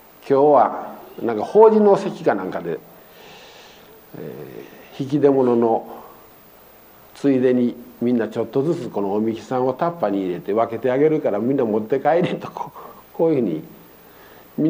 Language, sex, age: Japanese, male, 50-69